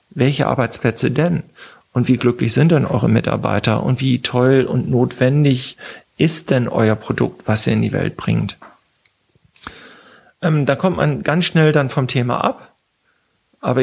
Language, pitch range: German, 115-135 Hz